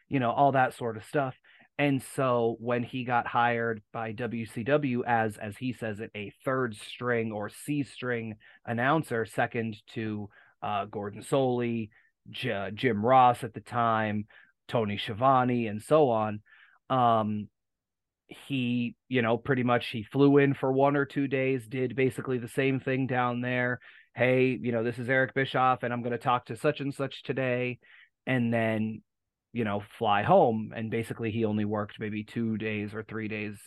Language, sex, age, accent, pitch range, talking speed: English, male, 30-49, American, 110-130 Hz, 175 wpm